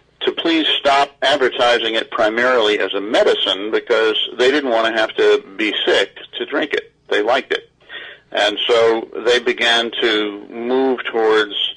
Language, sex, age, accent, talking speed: English, male, 50-69, American, 160 wpm